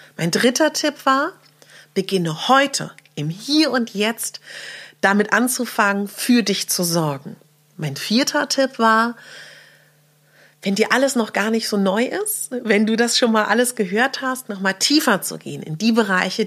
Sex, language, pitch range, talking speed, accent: female, German, 175-235 Hz, 165 wpm, German